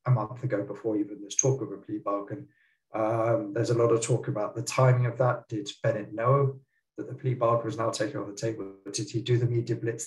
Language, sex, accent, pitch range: English, male, British, 110-130 Hz